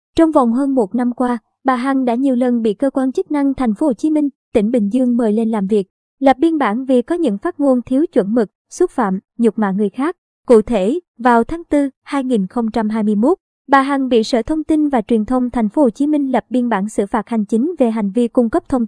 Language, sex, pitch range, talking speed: Vietnamese, male, 220-280 Hz, 245 wpm